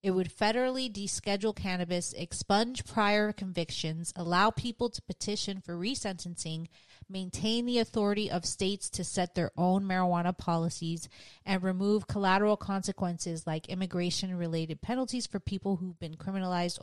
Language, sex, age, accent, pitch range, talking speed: English, female, 30-49, American, 170-210 Hz, 130 wpm